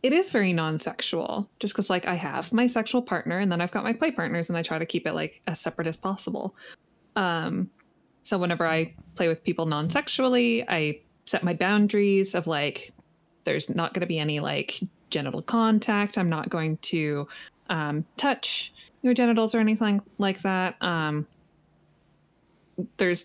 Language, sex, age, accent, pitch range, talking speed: English, female, 20-39, American, 165-210 Hz, 175 wpm